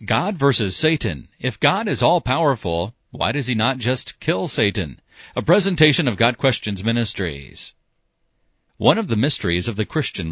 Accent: American